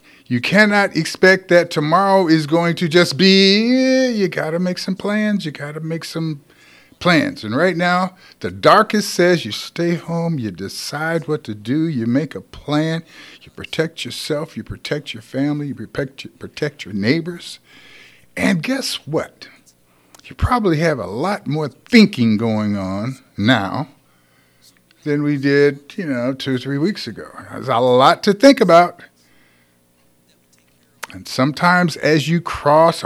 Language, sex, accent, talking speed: English, male, American, 155 wpm